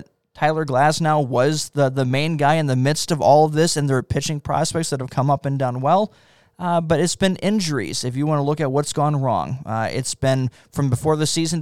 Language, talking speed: English, 245 wpm